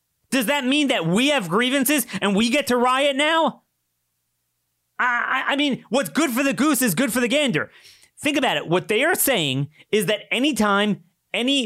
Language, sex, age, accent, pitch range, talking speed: English, male, 30-49, American, 160-250 Hz, 190 wpm